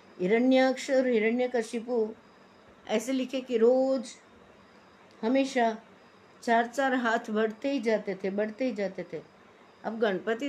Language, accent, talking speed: Hindi, native, 125 wpm